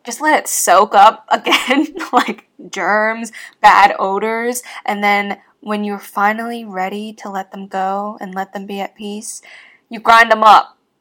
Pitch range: 200-285 Hz